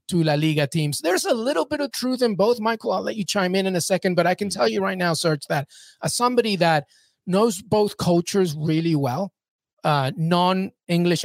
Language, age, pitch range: English, 30-49, 155-200 Hz